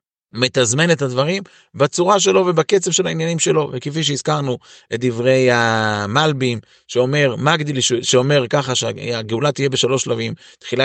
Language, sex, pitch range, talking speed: Hebrew, male, 115-145 Hz, 125 wpm